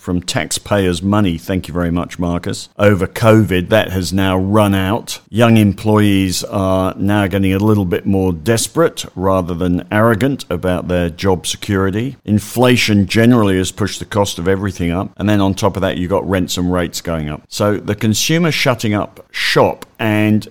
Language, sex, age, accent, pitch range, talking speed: English, male, 50-69, British, 90-105 Hz, 180 wpm